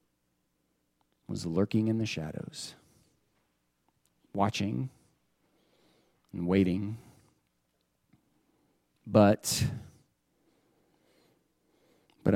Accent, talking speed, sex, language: American, 50 wpm, male, English